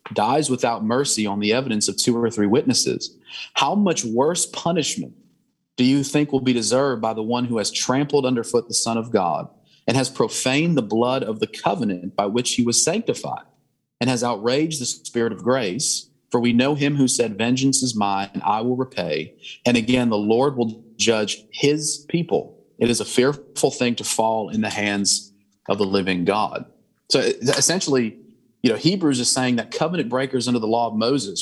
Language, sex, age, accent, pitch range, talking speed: English, male, 40-59, American, 115-140 Hz, 195 wpm